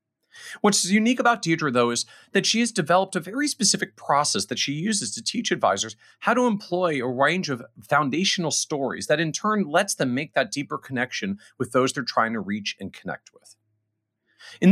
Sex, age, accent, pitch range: male, 40-59, American, 125-205 Hz